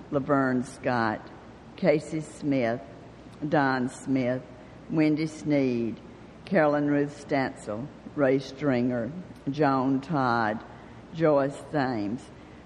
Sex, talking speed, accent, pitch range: female, 80 wpm, American, 125-150 Hz